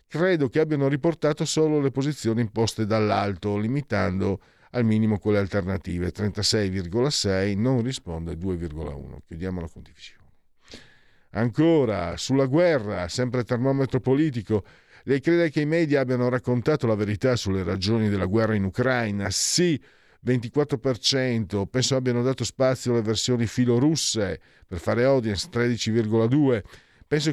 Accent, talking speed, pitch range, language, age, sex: native, 125 wpm, 100-135 Hz, Italian, 50-69, male